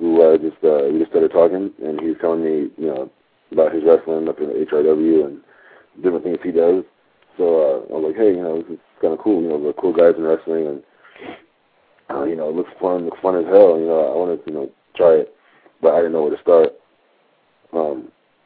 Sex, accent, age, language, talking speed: male, American, 40-59, English, 245 wpm